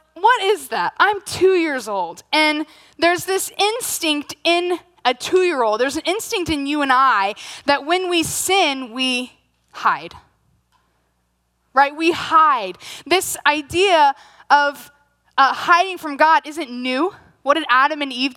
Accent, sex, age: American, female, 10-29